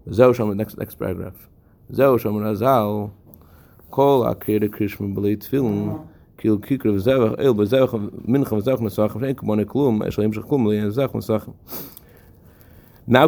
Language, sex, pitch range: English, male, 105-130 Hz